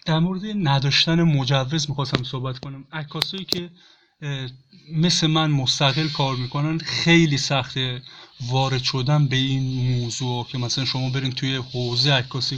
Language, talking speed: Persian, 135 wpm